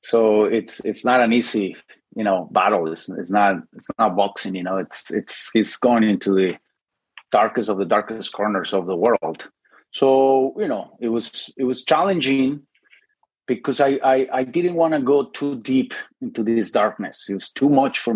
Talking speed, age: 190 wpm, 30-49